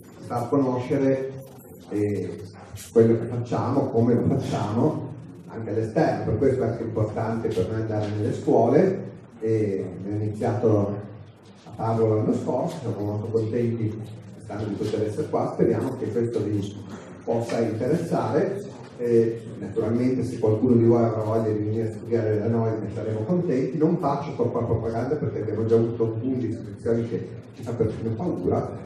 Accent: native